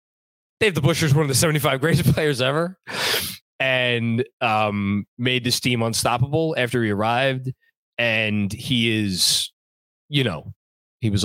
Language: English